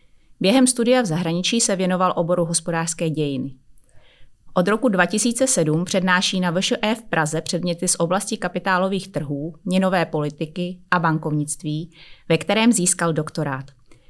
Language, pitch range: Czech, 160-195 Hz